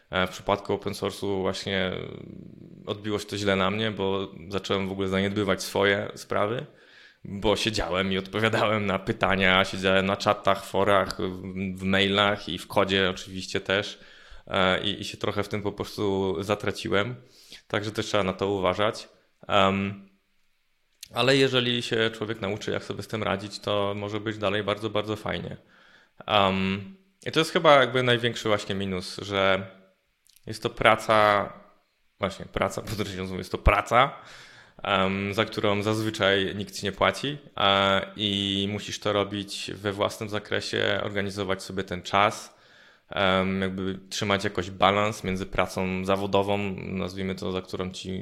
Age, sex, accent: 20-39, male, native